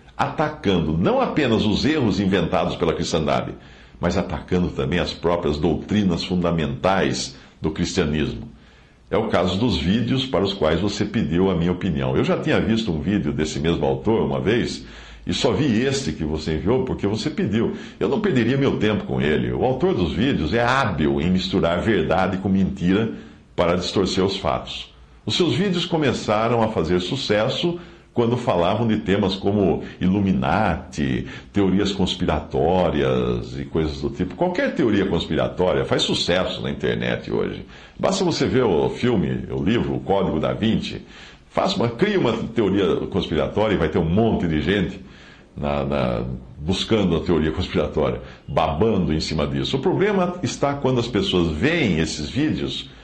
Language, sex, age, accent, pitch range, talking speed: Portuguese, male, 60-79, Brazilian, 75-105 Hz, 155 wpm